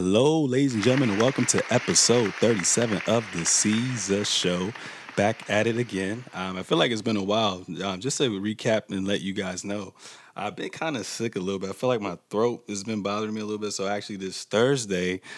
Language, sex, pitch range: English, male, 95-110 Hz